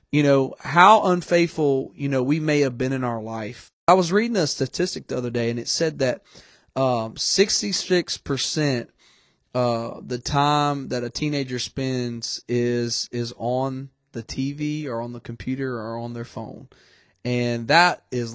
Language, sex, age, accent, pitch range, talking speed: English, male, 30-49, American, 120-155 Hz, 165 wpm